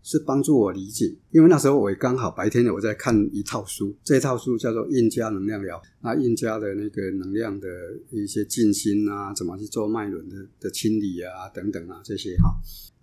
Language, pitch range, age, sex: Chinese, 100-125 Hz, 50-69, male